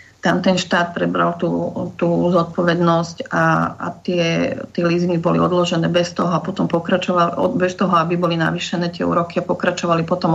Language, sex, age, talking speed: Slovak, female, 30-49, 160 wpm